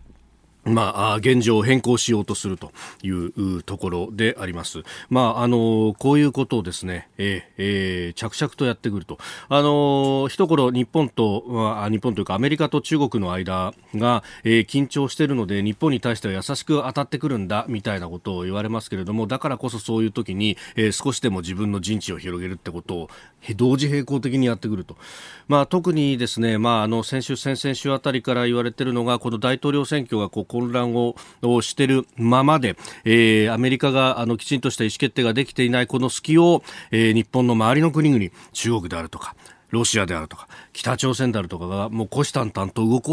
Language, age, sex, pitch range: Japanese, 40-59, male, 105-140 Hz